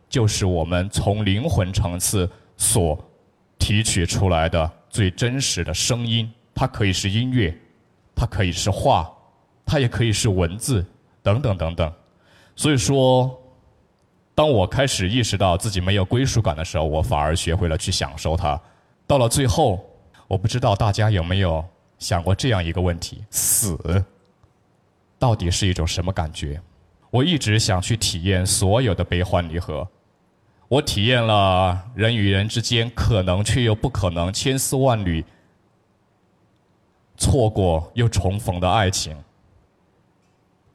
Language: Chinese